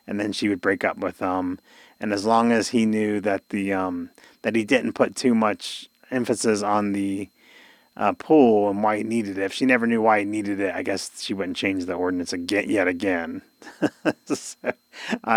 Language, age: English, 30-49